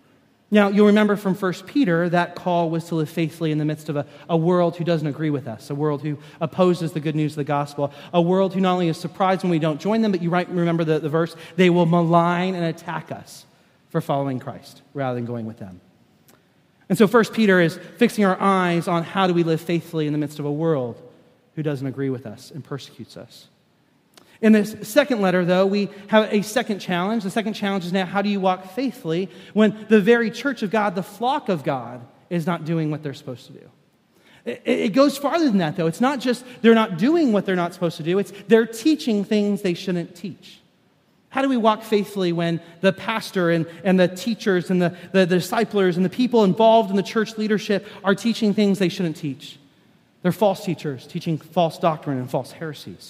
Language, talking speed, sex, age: English, 225 wpm, male, 30-49